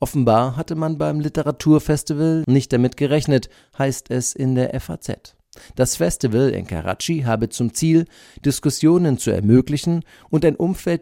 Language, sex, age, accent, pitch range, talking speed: German, male, 50-69, German, 115-145 Hz, 140 wpm